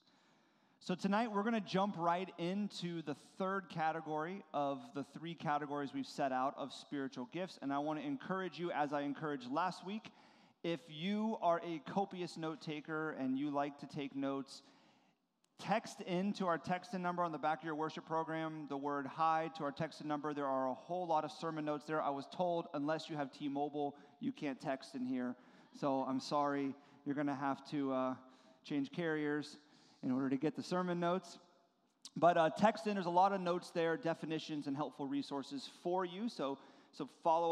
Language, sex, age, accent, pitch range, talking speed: English, male, 30-49, American, 145-185 Hz, 200 wpm